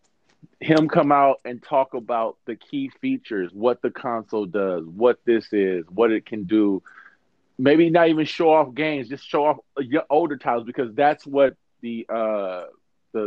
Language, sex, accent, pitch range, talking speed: English, male, American, 110-140 Hz, 170 wpm